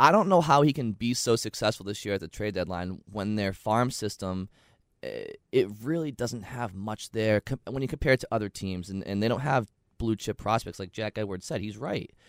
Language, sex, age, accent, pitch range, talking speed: English, male, 20-39, American, 95-115 Hz, 220 wpm